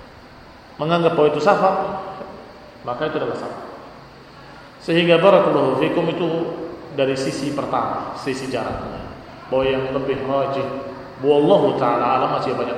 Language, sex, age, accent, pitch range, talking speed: Indonesian, male, 30-49, native, 130-170 Hz, 115 wpm